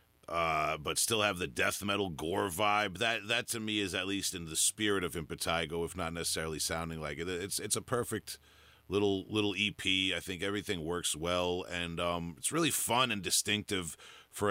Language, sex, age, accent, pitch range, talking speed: English, male, 40-59, American, 85-110 Hz, 195 wpm